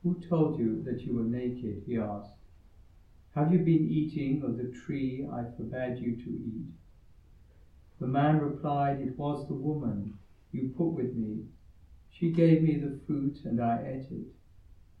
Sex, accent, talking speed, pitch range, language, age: male, British, 165 wpm, 90-150 Hz, English, 60-79